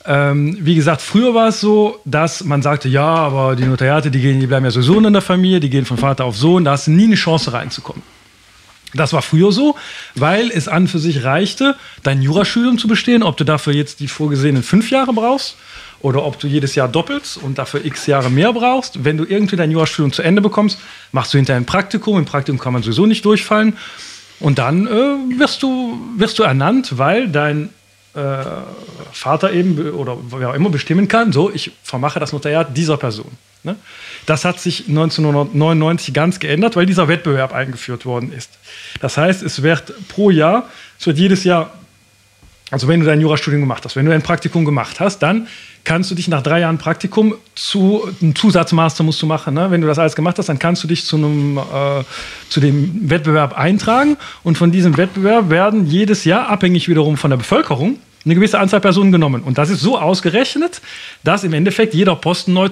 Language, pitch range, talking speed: German, 145-195 Hz, 200 wpm